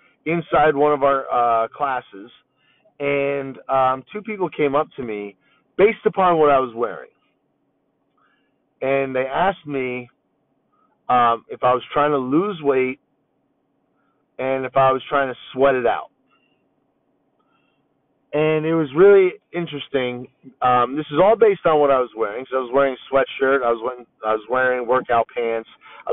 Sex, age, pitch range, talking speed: male, 30-49, 130-170 Hz, 160 wpm